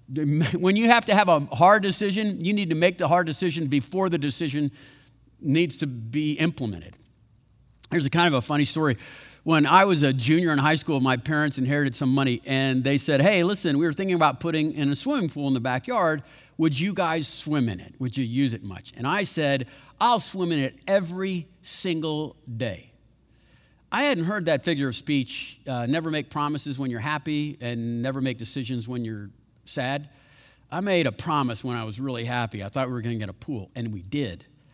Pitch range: 130-170 Hz